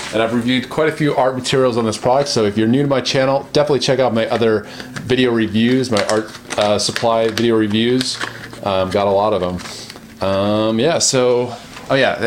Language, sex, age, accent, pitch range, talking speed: English, male, 30-49, American, 110-130 Hz, 205 wpm